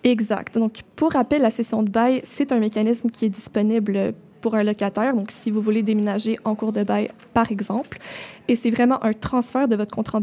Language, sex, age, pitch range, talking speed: French, female, 20-39, 215-240 Hz, 210 wpm